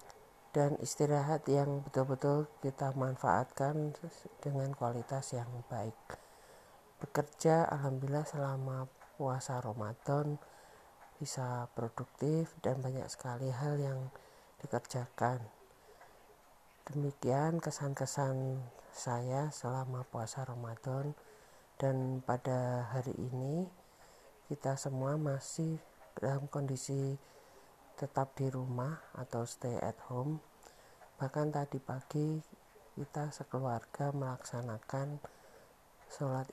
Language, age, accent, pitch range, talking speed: Indonesian, 50-69, native, 130-145 Hz, 85 wpm